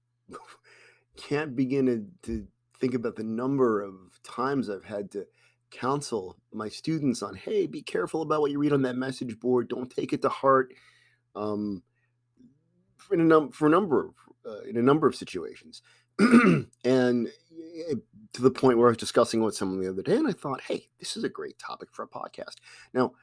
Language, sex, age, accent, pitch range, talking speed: English, male, 30-49, American, 115-150 Hz, 190 wpm